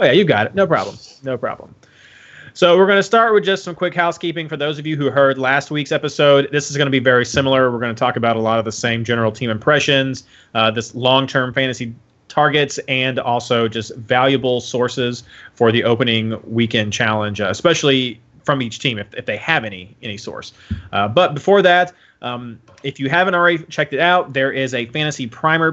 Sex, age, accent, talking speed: male, 30-49, American, 215 wpm